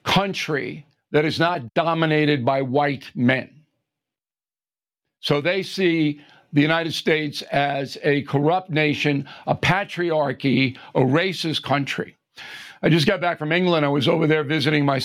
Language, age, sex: English, 60-79, male